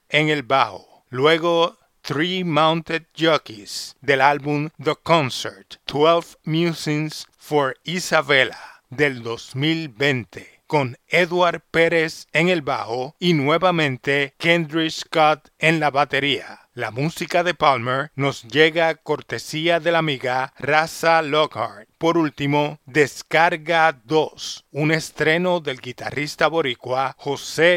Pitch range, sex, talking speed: 140-165 Hz, male, 110 wpm